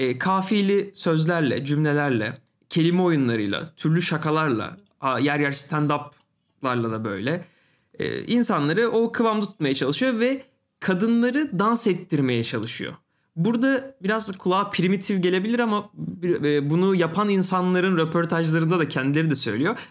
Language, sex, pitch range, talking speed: Turkish, male, 145-200 Hz, 110 wpm